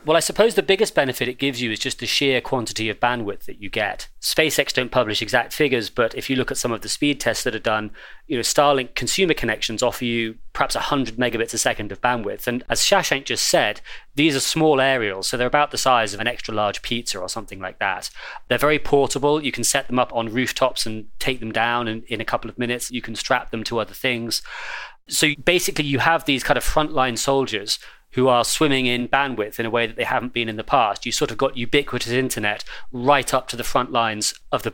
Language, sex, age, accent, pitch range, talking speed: English, male, 30-49, British, 115-135 Hz, 240 wpm